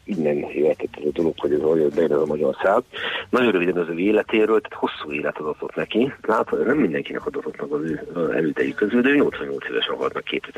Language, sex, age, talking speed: Hungarian, male, 40-59, 185 wpm